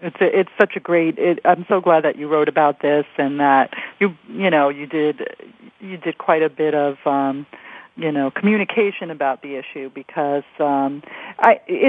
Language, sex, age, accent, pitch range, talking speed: English, female, 40-59, American, 145-190 Hz, 190 wpm